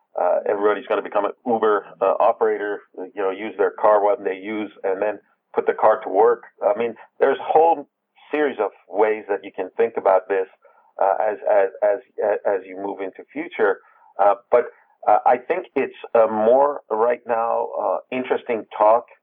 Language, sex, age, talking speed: English, male, 50-69, 185 wpm